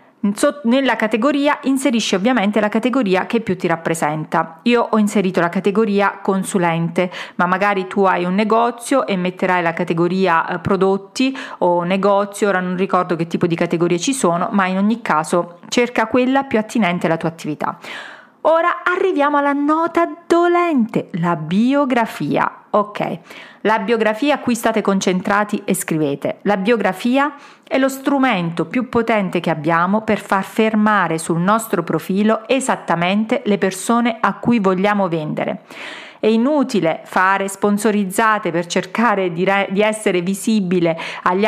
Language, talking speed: Italian, 145 wpm